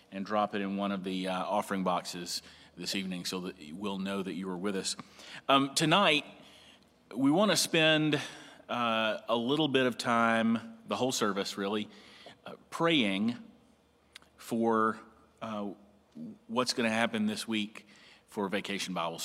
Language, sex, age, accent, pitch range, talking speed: English, male, 40-59, American, 95-120 Hz, 150 wpm